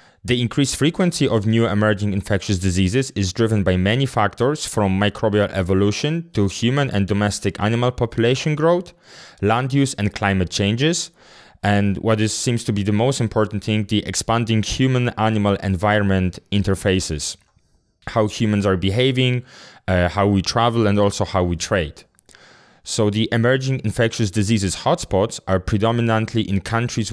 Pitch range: 95-120 Hz